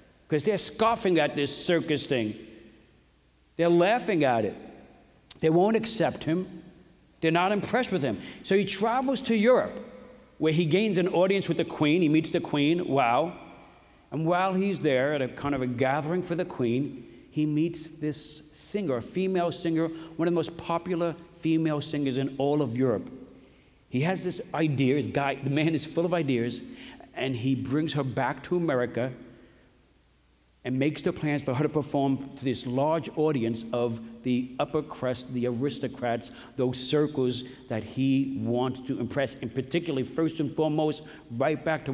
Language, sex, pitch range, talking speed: English, male, 125-165 Hz, 170 wpm